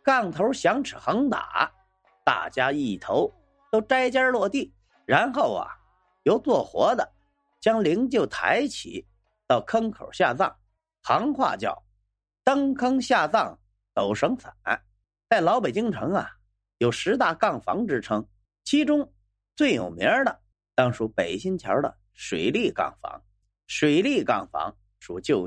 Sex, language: male, Chinese